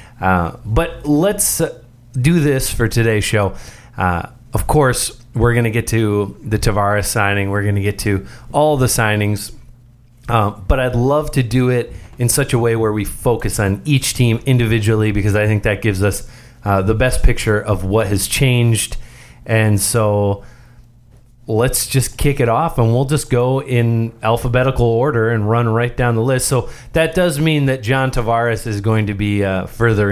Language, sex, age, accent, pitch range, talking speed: English, male, 30-49, American, 105-125 Hz, 185 wpm